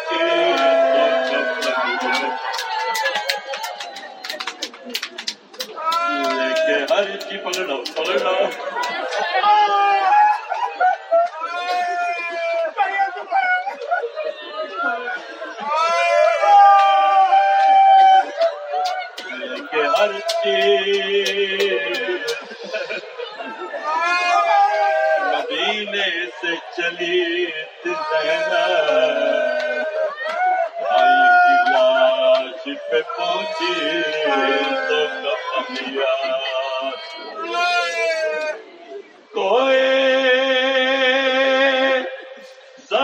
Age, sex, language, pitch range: 40-59, male, Urdu, 210-350 Hz